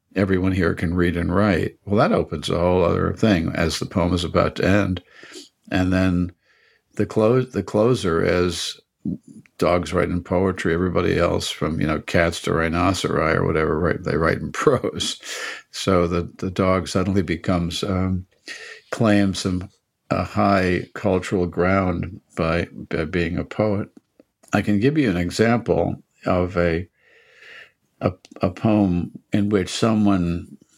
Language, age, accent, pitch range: English, 60-79, American, 90-105 Hz